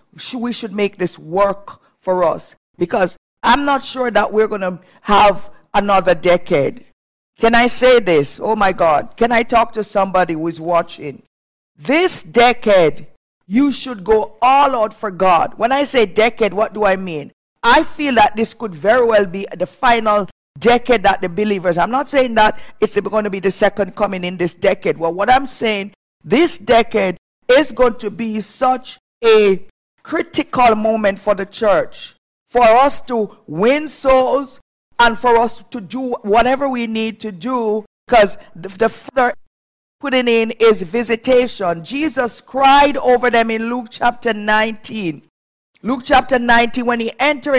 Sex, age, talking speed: female, 50-69, 165 wpm